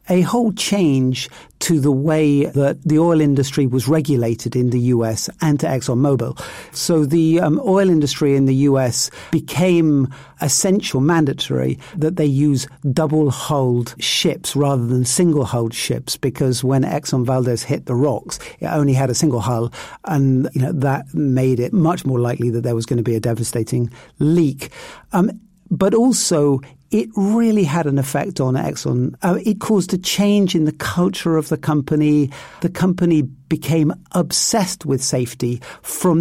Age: 50-69